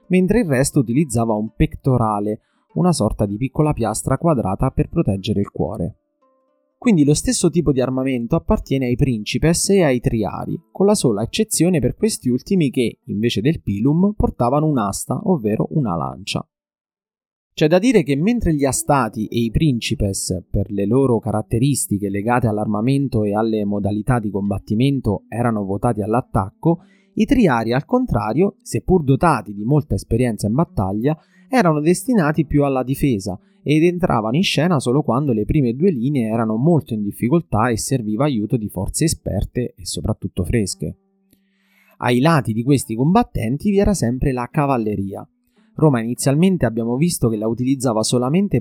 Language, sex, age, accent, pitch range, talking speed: Italian, male, 30-49, native, 110-170 Hz, 155 wpm